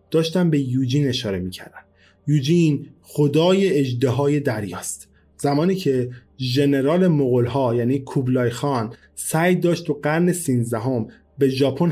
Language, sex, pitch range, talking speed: Persian, male, 120-150 Hz, 120 wpm